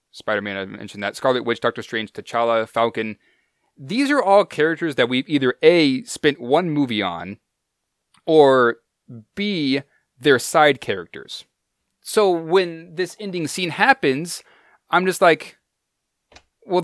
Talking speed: 130 wpm